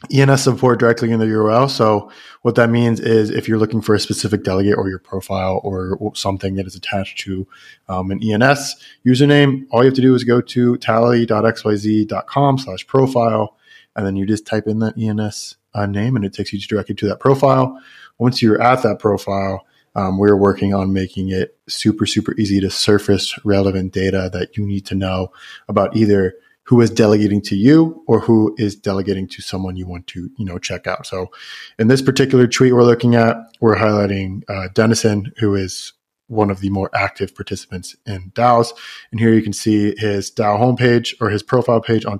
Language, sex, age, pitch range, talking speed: English, male, 20-39, 100-120 Hz, 195 wpm